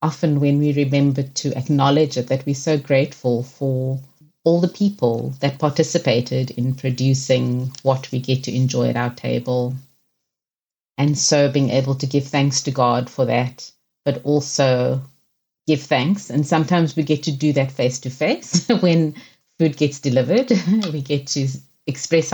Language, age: English, 30-49